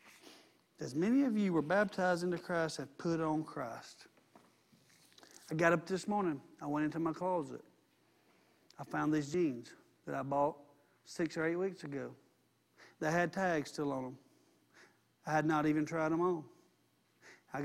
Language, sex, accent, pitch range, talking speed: English, male, American, 145-175 Hz, 165 wpm